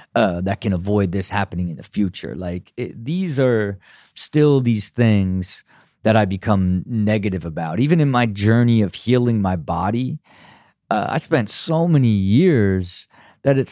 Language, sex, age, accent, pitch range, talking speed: English, male, 30-49, American, 105-145 Hz, 160 wpm